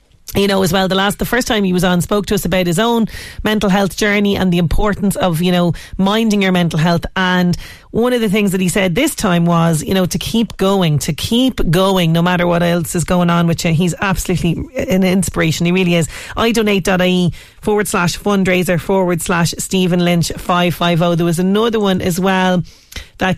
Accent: Irish